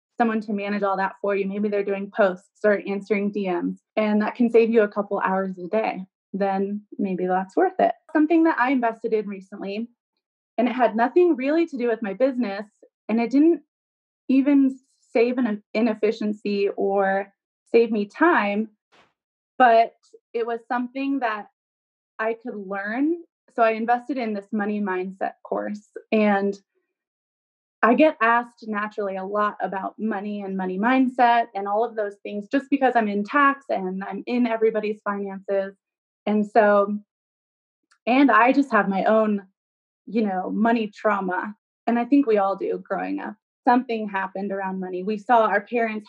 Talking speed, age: 165 wpm, 20-39